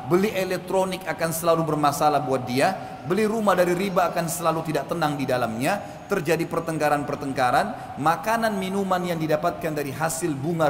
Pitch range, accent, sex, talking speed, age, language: 150-195 Hz, native, male, 145 wpm, 40-59, Indonesian